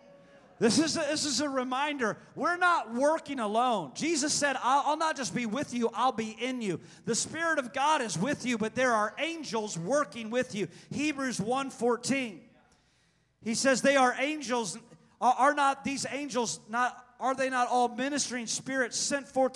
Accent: American